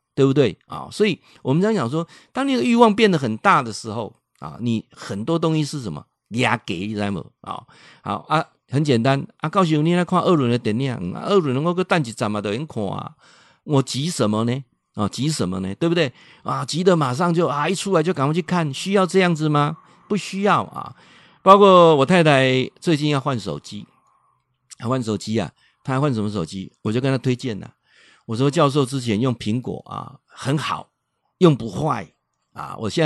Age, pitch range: 50-69, 130-190 Hz